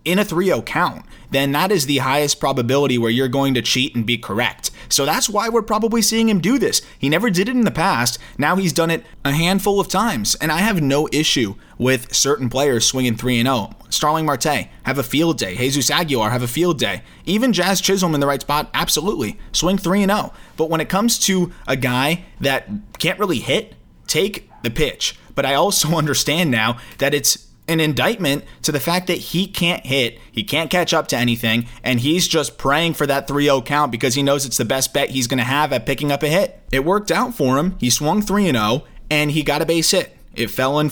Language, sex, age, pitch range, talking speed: English, male, 20-39, 130-180 Hz, 220 wpm